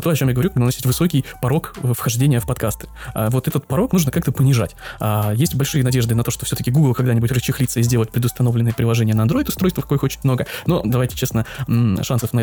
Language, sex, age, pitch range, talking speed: Russian, male, 20-39, 115-135 Hz, 210 wpm